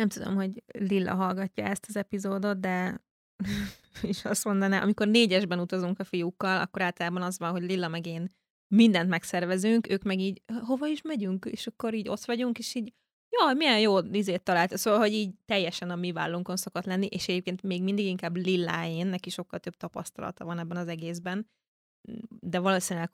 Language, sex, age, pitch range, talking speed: Hungarian, female, 20-39, 180-205 Hz, 180 wpm